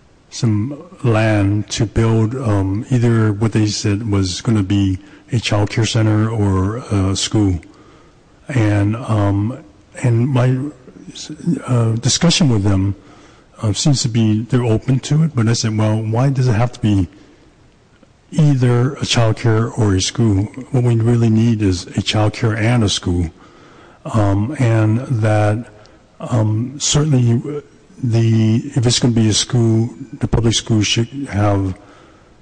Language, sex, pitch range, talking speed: English, male, 105-130 Hz, 150 wpm